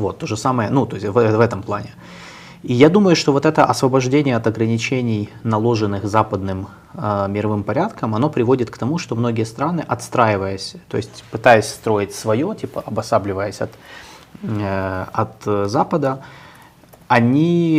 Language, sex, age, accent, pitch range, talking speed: Russian, male, 20-39, native, 105-130 Hz, 150 wpm